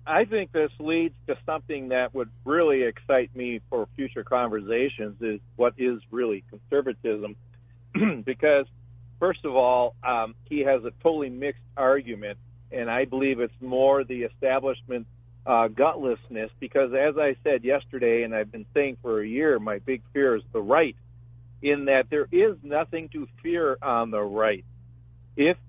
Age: 50-69